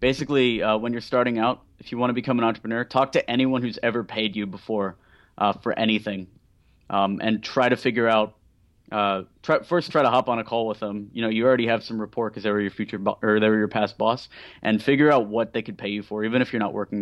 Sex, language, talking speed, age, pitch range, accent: male, English, 260 wpm, 20-39, 105-125 Hz, American